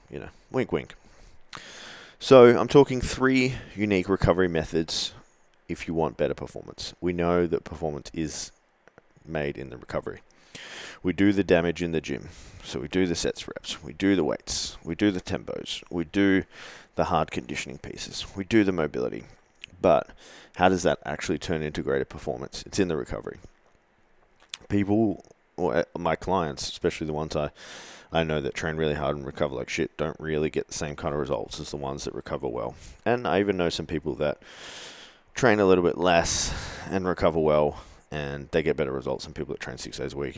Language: English